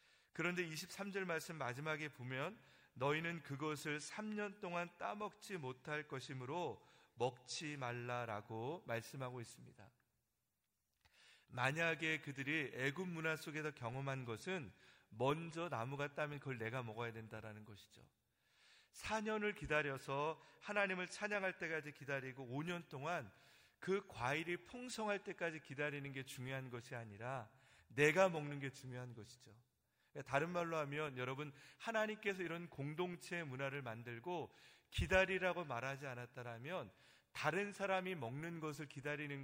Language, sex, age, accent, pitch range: Korean, male, 40-59, native, 130-170 Hz